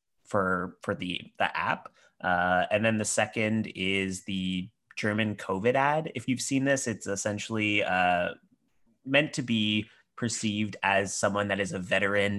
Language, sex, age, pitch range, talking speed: English, male, 30-49, 90-110 Hz, 155 wpm